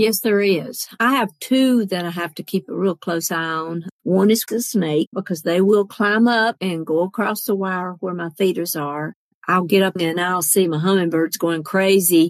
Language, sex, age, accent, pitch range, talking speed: English, female, 50-69, American, 170-210 Hz, 215 wpm